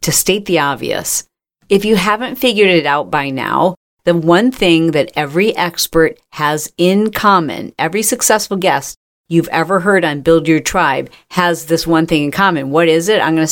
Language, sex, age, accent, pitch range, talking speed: English, female, 50-69, American, 160-215 Hz, 190 wpm